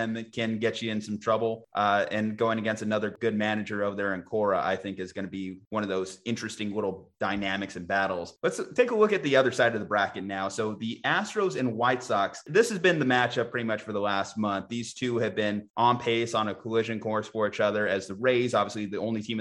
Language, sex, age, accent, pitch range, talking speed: English, male, 30-49, American, 105-130 Hz, 245 wpm